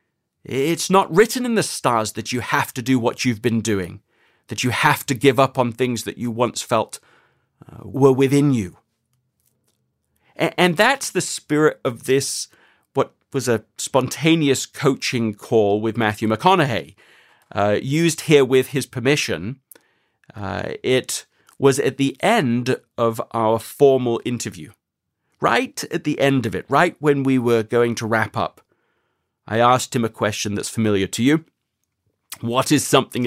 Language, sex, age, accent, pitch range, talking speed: English, male, 40-59, British, 115-145 Hz, 155 wpm